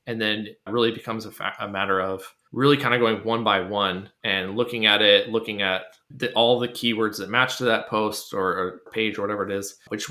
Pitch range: 95-120 Hz